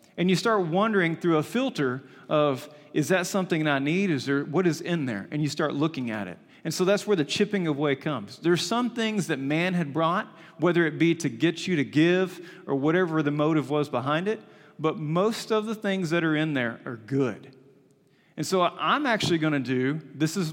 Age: 40-59